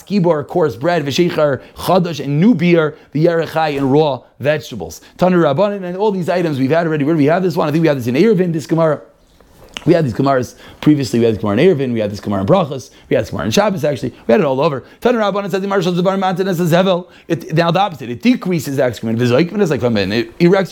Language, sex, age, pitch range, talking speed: English, male, 30-49, 135-185 Hz, 210 wpm